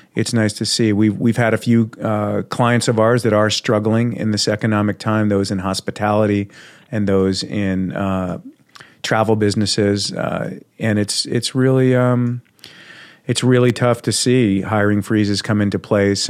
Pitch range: 95-110 Hz